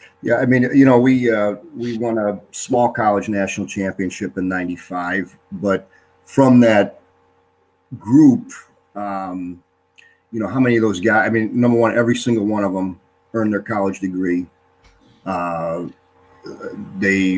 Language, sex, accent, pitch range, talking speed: English, male, American, 85-110 Hz, 150 wpm